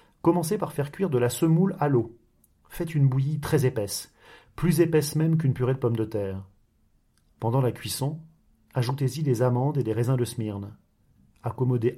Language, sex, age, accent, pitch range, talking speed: French, male, 40-59, French, 115-155 Hz, 175 wpm